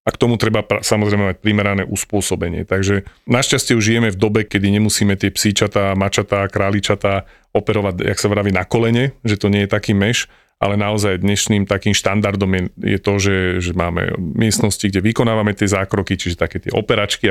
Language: Slovak